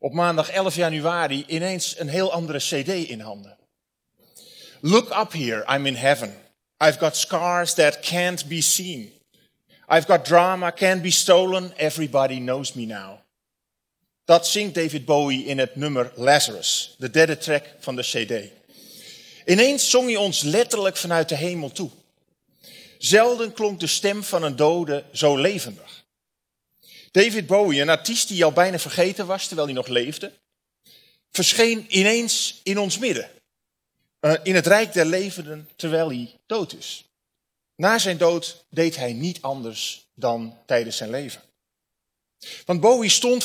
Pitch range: 150-190 Hz